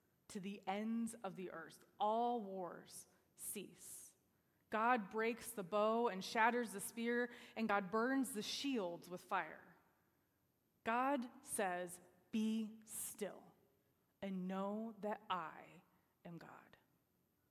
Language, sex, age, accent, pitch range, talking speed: English, female, 20-39, American, 200-245 Hz, 115 wpm